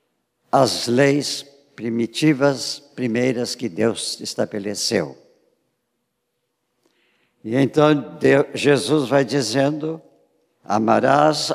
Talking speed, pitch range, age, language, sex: 70 wpm, 120-170 Hz, 60-79, Portuguese, male